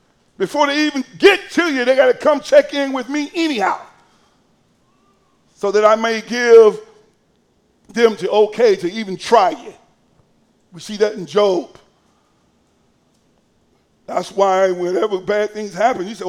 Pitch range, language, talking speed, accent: 205-290 Hz, English, 145 wpm, American